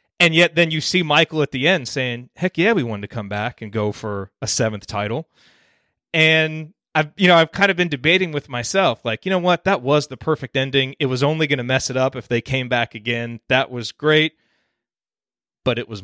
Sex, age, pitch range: male, 30-49, 120-160 Hz